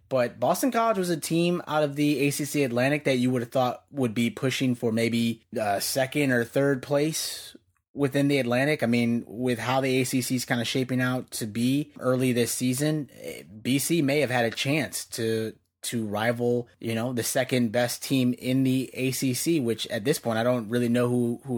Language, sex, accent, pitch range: English, male, American, 110-130 Hz